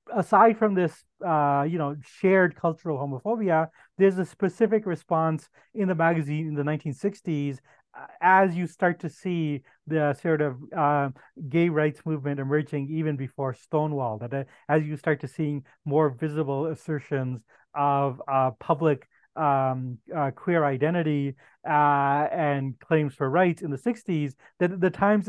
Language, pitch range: English, 140-175 Hz